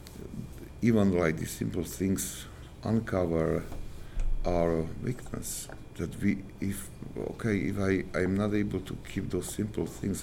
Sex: male